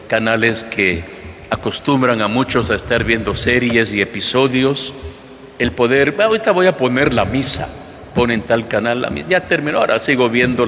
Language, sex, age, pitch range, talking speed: Spanish, male, 50-69, 110-140 Hz, 170 wpm